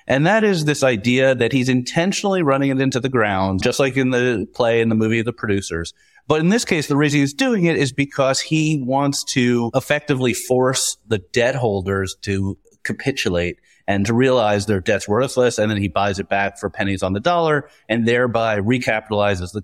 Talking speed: 200 wpm